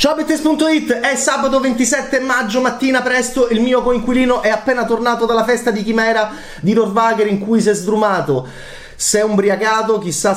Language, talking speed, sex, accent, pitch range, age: Italian, 170 wpm, male, native, 170-230 Hz, 30-49